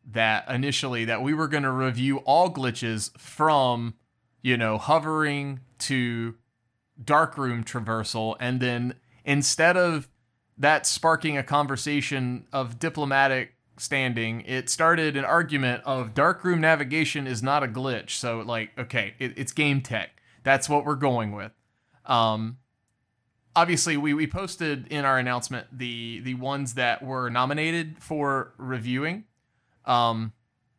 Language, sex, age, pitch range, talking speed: English, male, 30-49, 120-150 Hz, 135 wpm